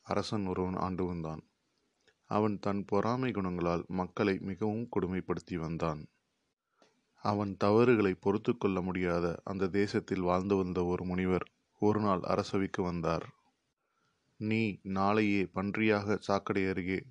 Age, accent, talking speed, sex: 30-49, native, 110 wpm, male